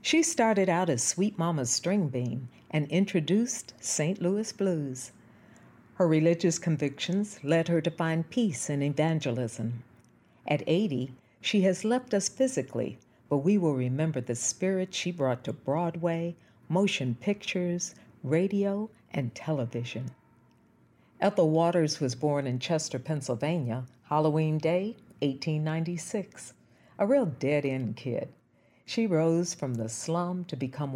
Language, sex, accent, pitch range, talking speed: English, female, American, 130-180 Hz, 130 wpm